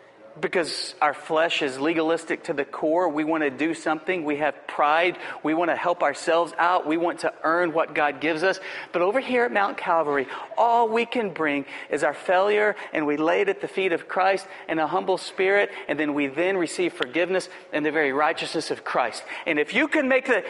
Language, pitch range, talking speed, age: English, 175-295 Hz, 210 wpm, 40-59